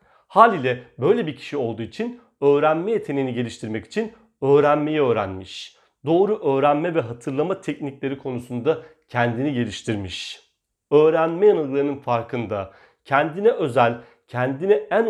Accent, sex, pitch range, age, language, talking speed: native, male, 120-190 Hz, 40-59, Turkish, 105 wpm